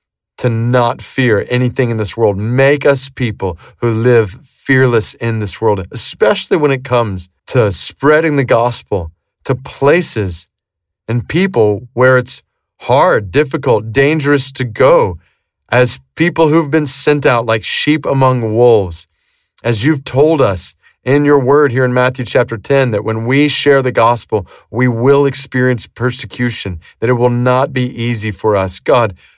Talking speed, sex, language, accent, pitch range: 155 wpm, male, English, American, 105-135 Hz